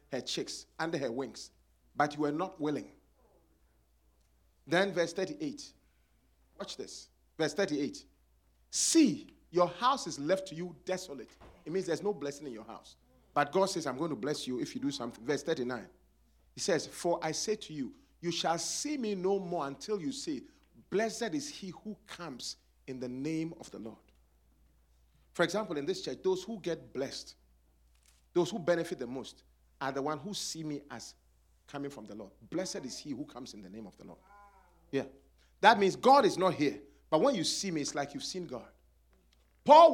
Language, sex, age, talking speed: English, male, 40-59, 190 wpm